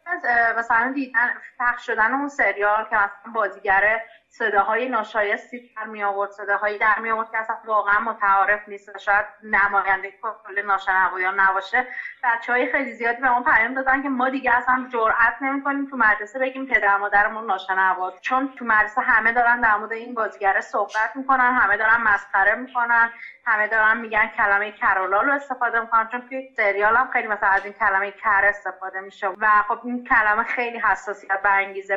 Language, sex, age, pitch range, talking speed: Persian, female, 30-49, 200-240 Hz, 160 wpm